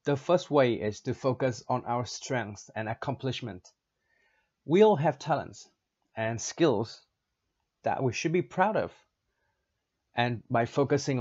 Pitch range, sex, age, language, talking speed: 115-145 Hz, male, 30-49, Vietnamese, 140 wpm